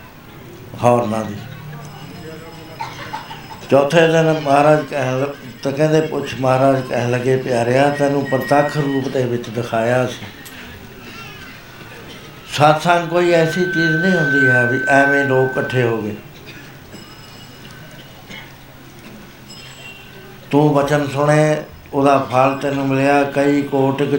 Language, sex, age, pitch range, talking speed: Punjabi, male, 60-79, 130-155 Hz, 105 wpm